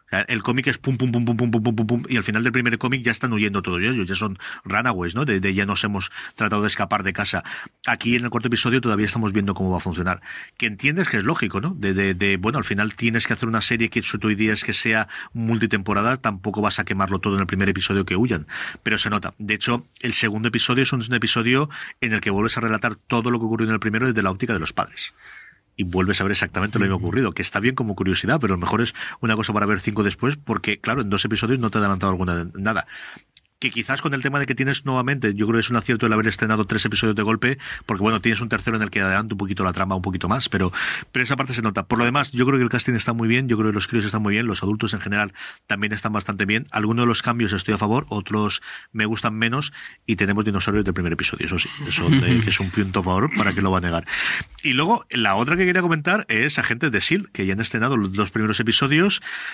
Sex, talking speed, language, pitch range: male, 275 wpm, Spanish, 100-120 Hz